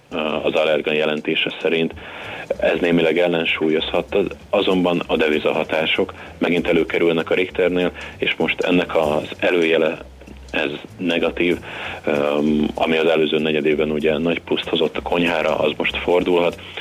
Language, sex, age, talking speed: Hungarian, male, 30-49, 120 wpm